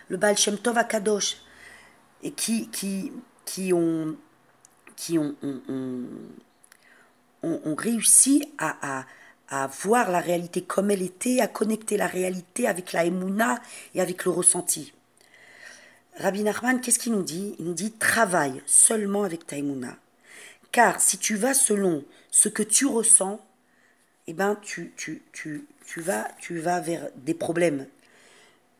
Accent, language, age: French, French, 40-59